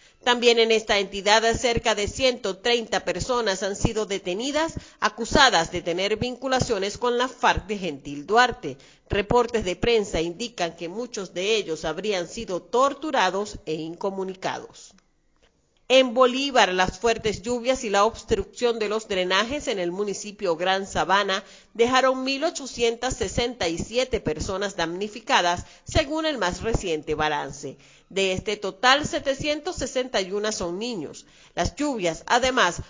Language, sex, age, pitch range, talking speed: Spanish, female, 40-59, 190-245 Hz, 125 wpm